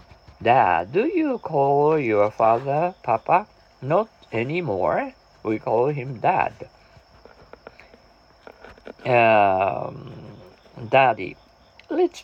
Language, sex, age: Japanese, male, 50-69